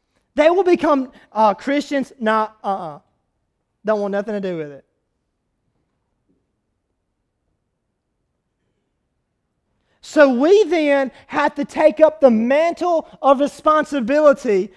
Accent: American